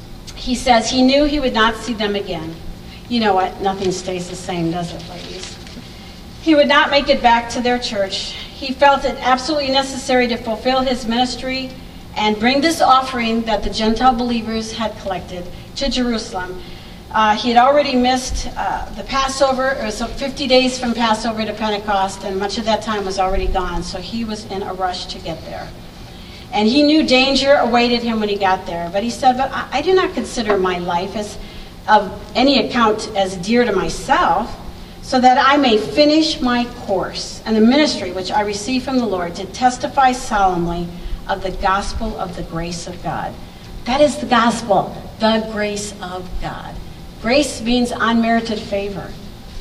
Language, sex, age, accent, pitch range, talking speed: English, female, 50-69, American, 195-255 Hz, 180 wpm